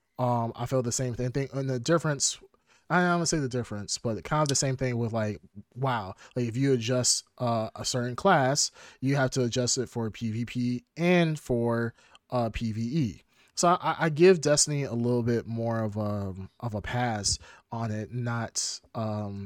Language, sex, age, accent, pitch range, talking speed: English, male, 30-49, American, 115-140 Hz, 180 wpm